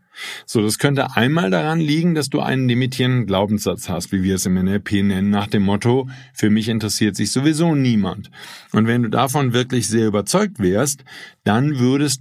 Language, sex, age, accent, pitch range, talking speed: German, male, 50-69, German, 105-145 Hz, 180 wpm